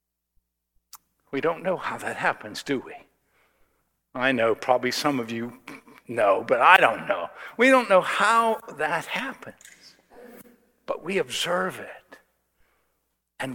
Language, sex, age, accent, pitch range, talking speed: English, male, 60-79, American, 125-160 Hz, 135 wpm